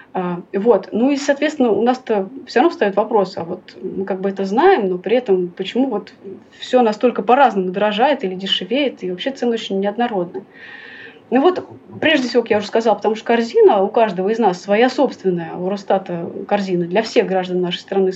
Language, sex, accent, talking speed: Russian, female, native, 190 wpm